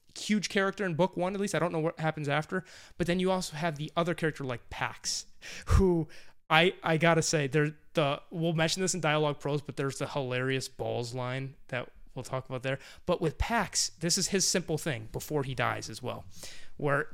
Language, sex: English, male